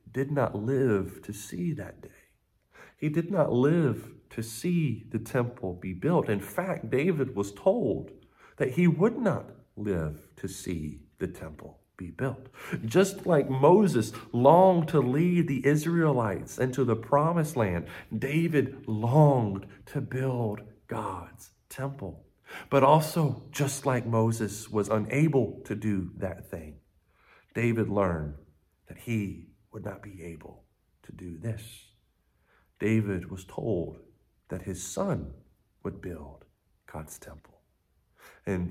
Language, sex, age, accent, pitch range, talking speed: English, male, 40-59, American, 95-135 Hz, 130 wpm